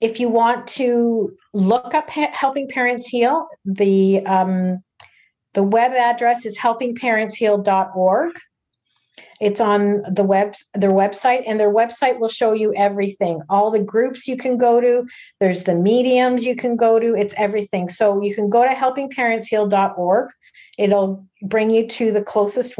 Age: 40-59